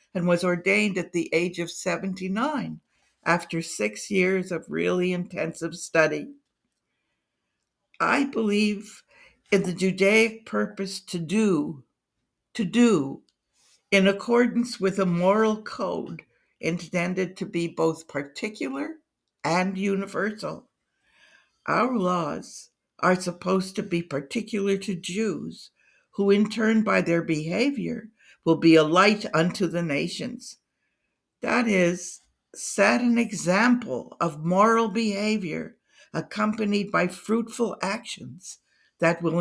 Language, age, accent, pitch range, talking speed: English, 60-79, American, 170-215 Hz, 115 wpm